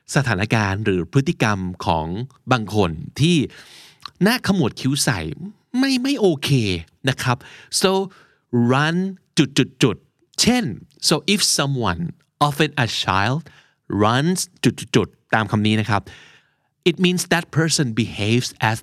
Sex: male